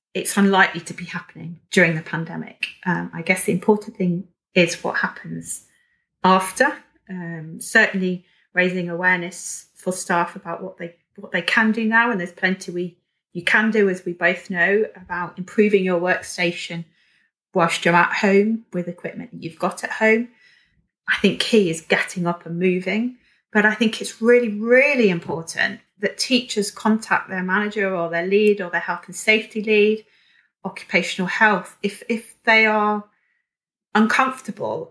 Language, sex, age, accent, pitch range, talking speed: English, female, 30-49, British, 175-220 Hz, 160 wpm